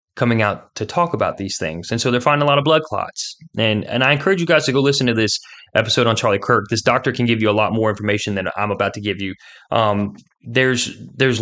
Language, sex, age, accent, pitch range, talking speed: English, male, 20-39, American, 105-130 Hz, 260 wpm